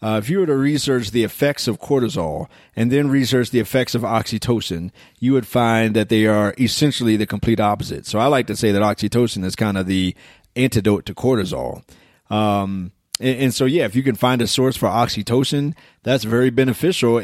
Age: 30-49